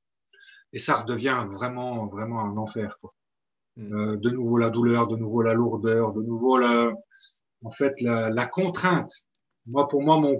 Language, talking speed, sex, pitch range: French, 165 wpm, male, 115-150 Hz